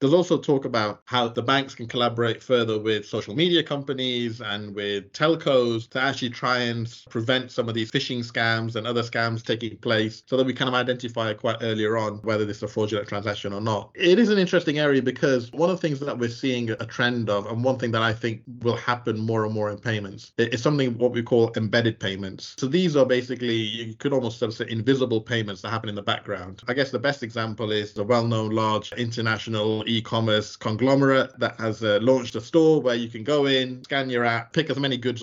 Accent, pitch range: British, 110-125 Hz